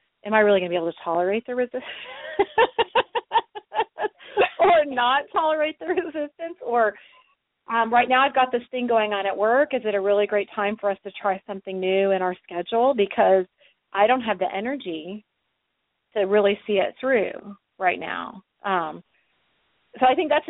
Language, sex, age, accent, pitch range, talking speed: English, female, 30-49, American, 195-265 Hz, 180 wpm